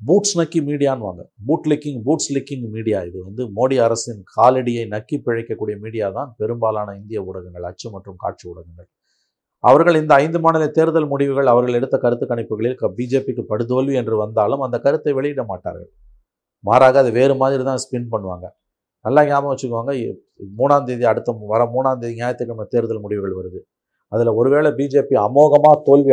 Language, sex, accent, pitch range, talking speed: Tamil, male, native, 110-140 Hz, 150 wpm